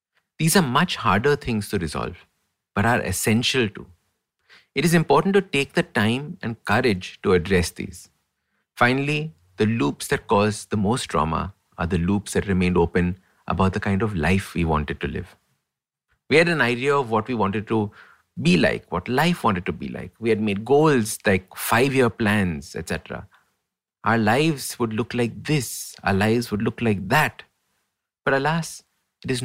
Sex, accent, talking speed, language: male, Indian, 175 wpm, English